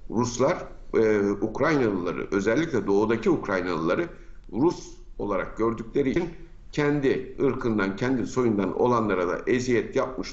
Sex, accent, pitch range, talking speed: male, native, 110-135 Hz, 105 wpm